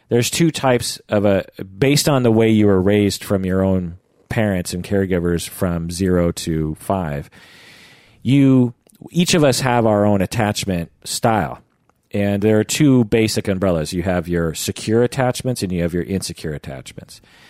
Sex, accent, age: male, American, 40-59